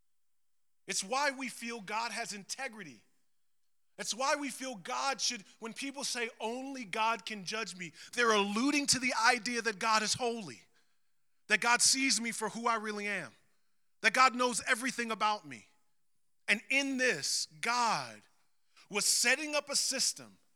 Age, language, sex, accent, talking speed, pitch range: 30-49, English, male, American, 160 wpm, 170-235 Hz